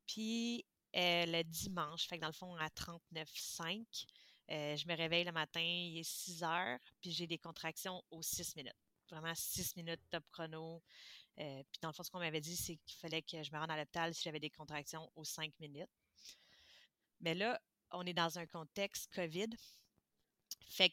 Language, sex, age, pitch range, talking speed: French, female, 30-49, 155-175 Hz, 190 wpm